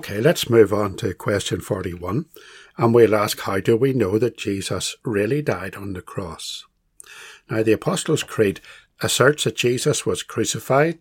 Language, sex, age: English, male, 60-79